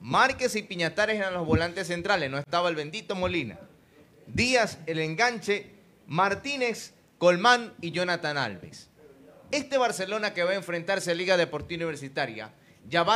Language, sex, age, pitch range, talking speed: Spanish, male, 30-49, 155-205 Hz, 145 wpm